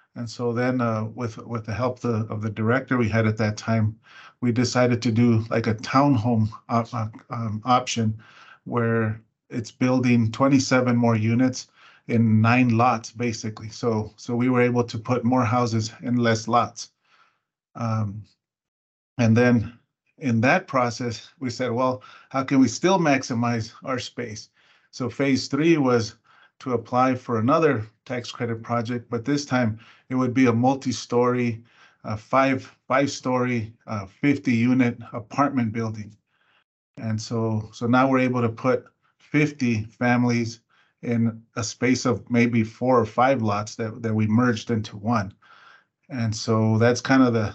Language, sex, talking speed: English, male, 155 wpm